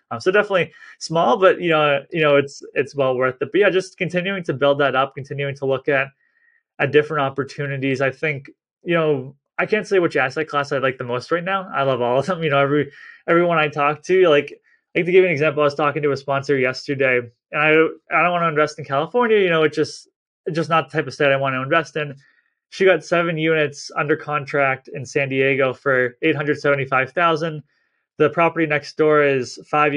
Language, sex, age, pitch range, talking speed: English, male, 20-39, 135-160 Hz, 225 wpm